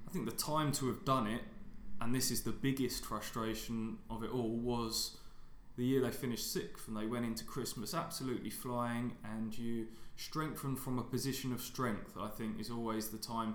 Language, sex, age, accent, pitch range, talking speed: English, male, 20-39, British, 110-130 Hz, 195 wpm